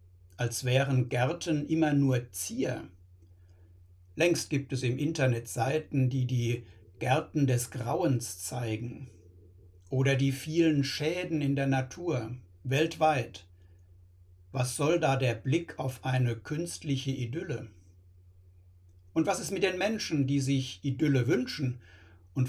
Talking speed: 125 wpm